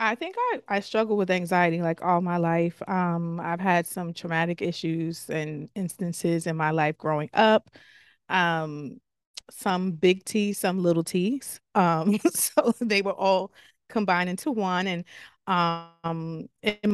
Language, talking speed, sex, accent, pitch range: English, 150 wpm, female, American, 170-195 Hz